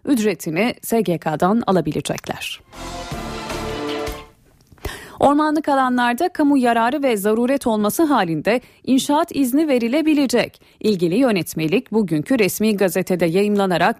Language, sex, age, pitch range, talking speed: Turkish, female, 30-49, 180-270 Hz, 85 wpm